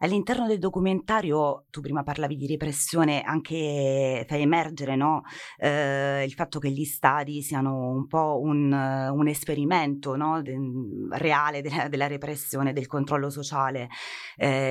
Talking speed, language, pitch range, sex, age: 140 wpm, Italian, 140-165 Hz, female, 30-49